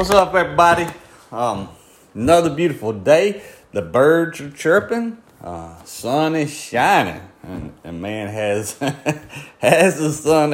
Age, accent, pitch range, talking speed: 30-49, American, 90-125 Hz, 125 wpm